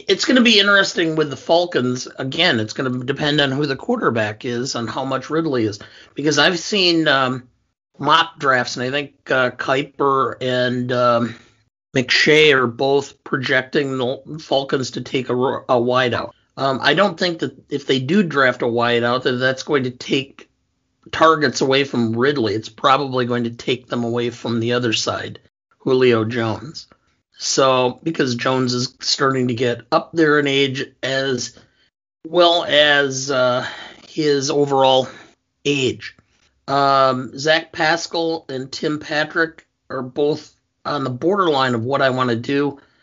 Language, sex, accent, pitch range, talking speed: English, male, American, 125-150 Hz, 160 wpm